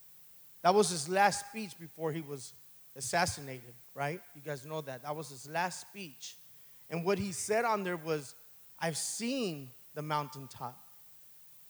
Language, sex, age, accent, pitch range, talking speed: English, male, 30-49, American, 145-190 Hz, 155 wpm